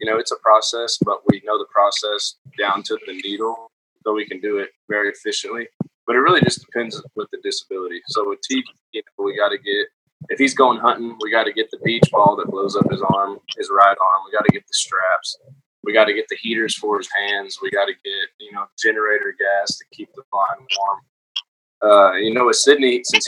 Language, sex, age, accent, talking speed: English, male, 20-39, American, 235 wpm